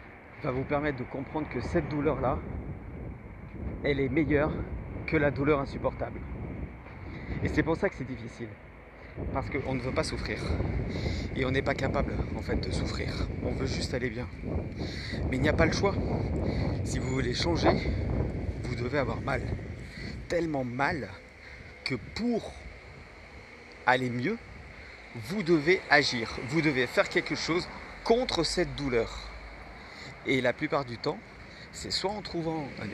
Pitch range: 100-155 Hz